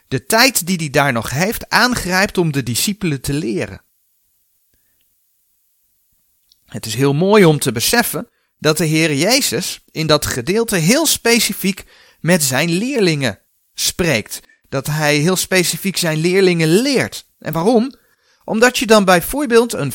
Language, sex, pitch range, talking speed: Dutch, male, 135-205 Hz, 140 wpm